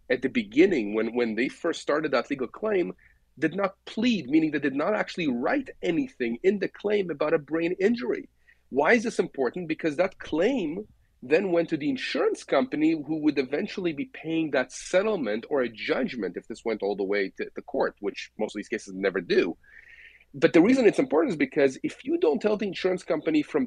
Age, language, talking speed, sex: 40-59, English, 210 wpm, male